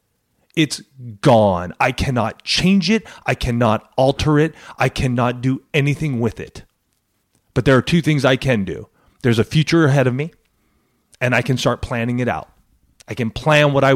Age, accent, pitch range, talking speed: 30-49, American, 105-135 Hz, 180 wpm